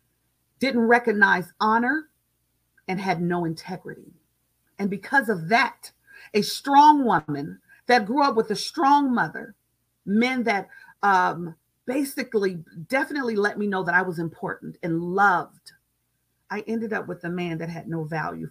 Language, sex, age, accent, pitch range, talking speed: English, female, 40-59, American, 170-245 Hz, 145 wpm